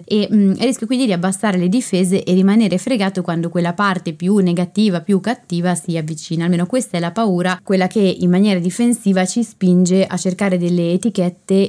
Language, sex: Italian, female